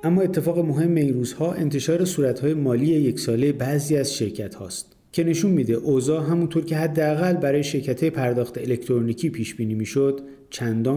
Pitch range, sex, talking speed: 120-160 Hz, male, 160 wpm